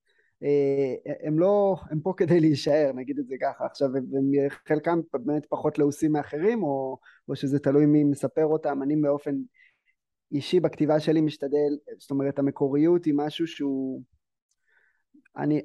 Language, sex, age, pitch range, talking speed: Hebrew, male, 20-39, 145-170 Hz, 150 wpm